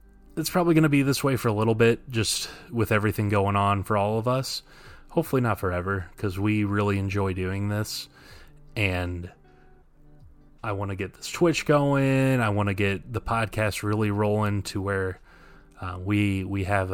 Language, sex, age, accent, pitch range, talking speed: English, male, 20-39, American, 95-115 Hz, 180 wpm